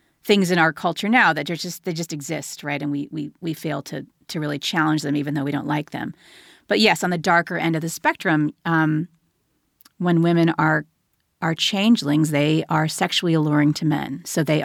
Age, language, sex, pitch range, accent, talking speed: 30-49, English, female, 150-175 Hz, American, 205 wpm